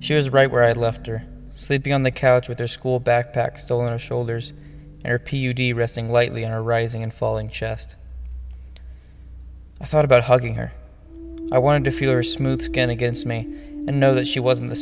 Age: 10-29